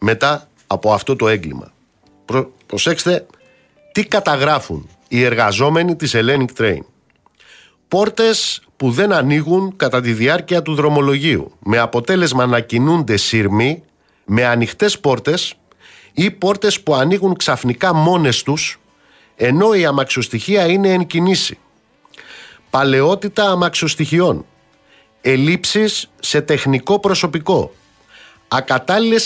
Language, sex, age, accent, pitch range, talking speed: Greek, male, 50-69, native, 120-175 Hz, 105 wpm